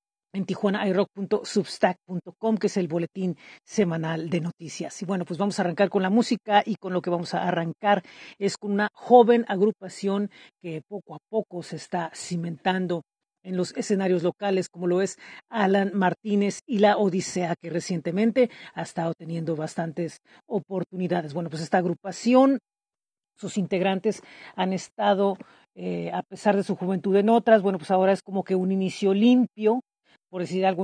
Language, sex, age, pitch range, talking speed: Spanish, female, 40-59, 180-215 Hz, 165 wpm